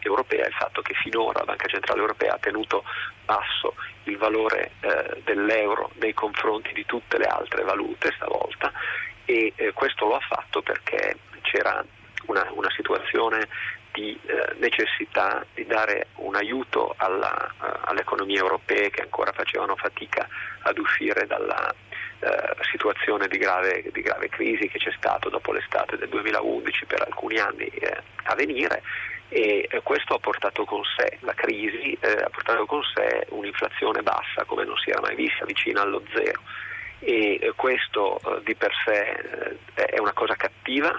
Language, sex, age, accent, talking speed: Italian, male, 40-59, native, 145 wpm